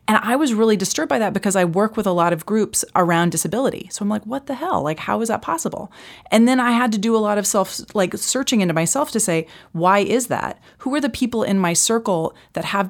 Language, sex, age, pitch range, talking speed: English, female, 30-49, 170-230 Hz, 260 wpm